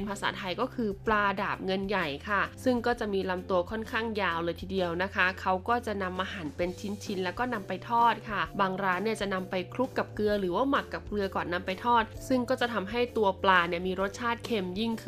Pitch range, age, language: 190-245 Hz, 20-39, Thai